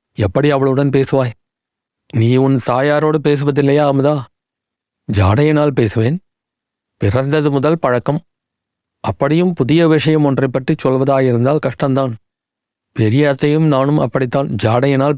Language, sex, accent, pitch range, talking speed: Tamil, male, native, 125-155 Hz, 95 wpm